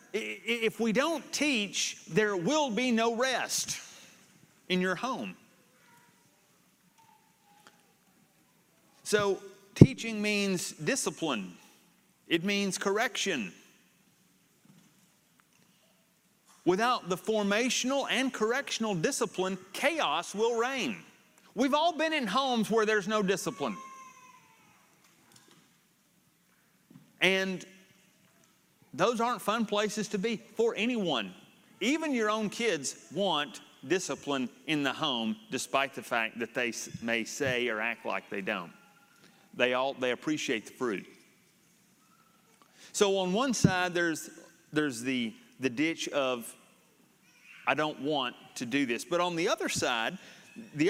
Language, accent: English, American